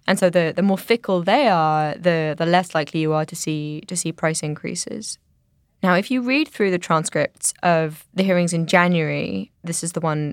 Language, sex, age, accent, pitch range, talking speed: English, female, 10-29, British, 170-205 Hz, 210 wpm